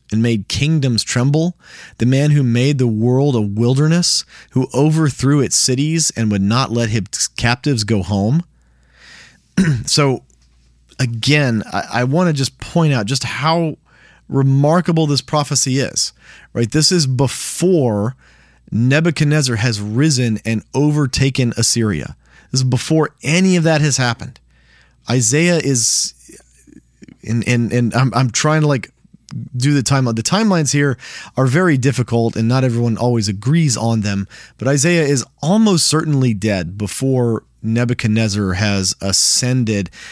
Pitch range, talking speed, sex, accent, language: 110-145 Hz, 135 wpm, male, American, English